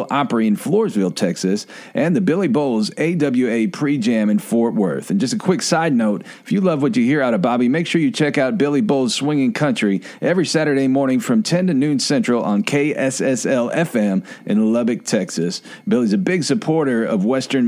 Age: 40-59